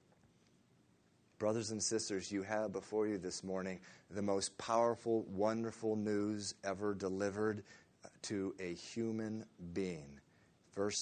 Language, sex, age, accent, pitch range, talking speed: English, male, 40-59, American, 100-125 Hz, 115 wpm